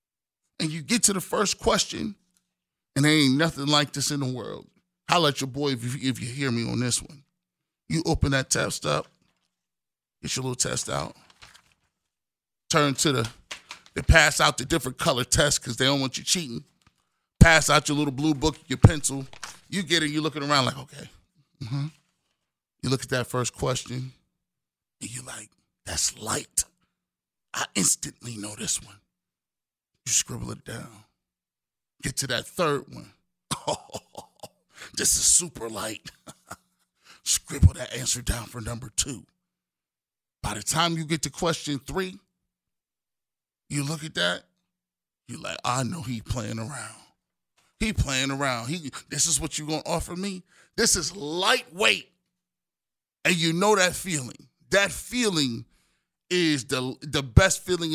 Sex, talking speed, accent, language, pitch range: male, 160 wpm, American, English, 120-160 Hz